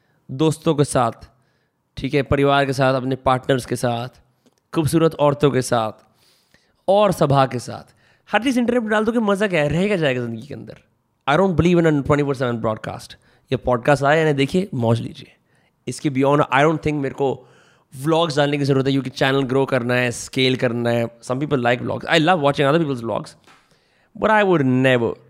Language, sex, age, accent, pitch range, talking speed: Hindi, male, 20-39, native, 125-150 Hz, 200 wpm